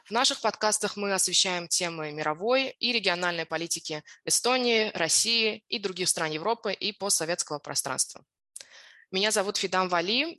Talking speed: 135 wpm